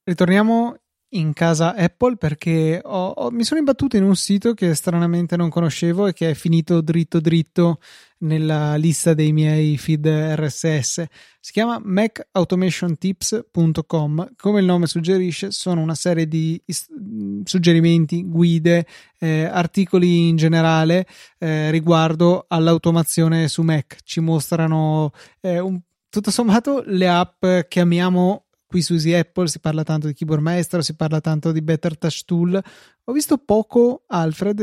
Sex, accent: male, native